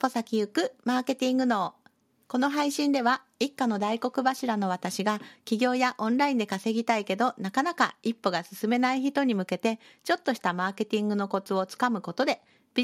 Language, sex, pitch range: Japanese, female, 180-255 Hz